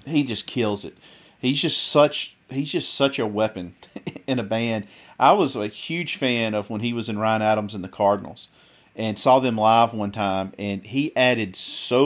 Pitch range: 105-130 Hz